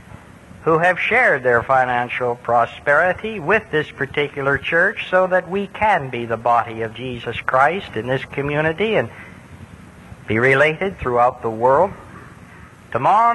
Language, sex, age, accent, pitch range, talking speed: English, male, 50-69, American, 120-185 Hz, 135 wpm